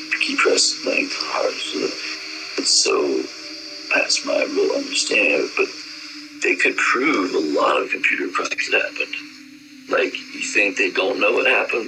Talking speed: 165 wpm